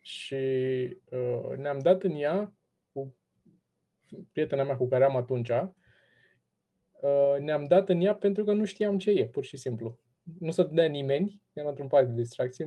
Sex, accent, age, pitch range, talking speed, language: male, native, 20-39, 130-185 Hz, 175 wpm, Romanian